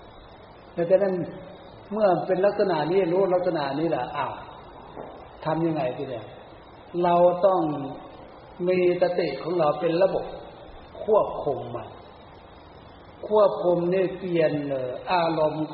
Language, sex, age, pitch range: Thai, male, 60-79, 145-185 Hz